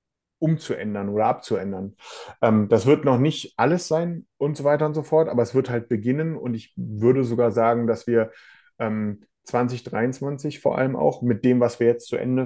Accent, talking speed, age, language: German, 185 wpm, 30-49, German